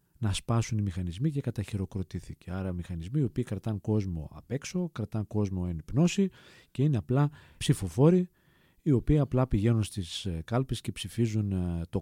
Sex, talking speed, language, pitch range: male, 150 wpm, Greek, 95-130 Hz